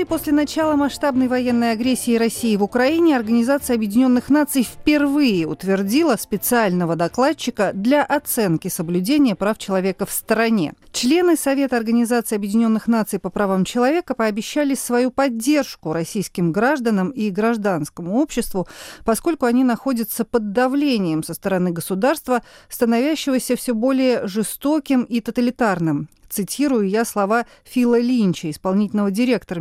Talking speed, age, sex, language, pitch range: 120 wpm, 40-59, female, Russian, 190-270 Hz